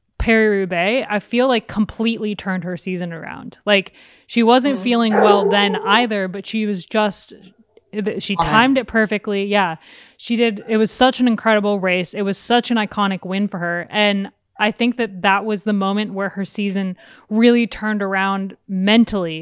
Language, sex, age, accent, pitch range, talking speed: English, female, 20-39, American, 190-225 Hz, 175 wpm